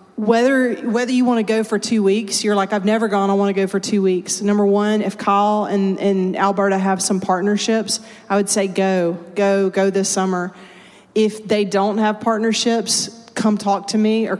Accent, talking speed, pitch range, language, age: American, 205 wpm, 190-220 Hz, English, 30-49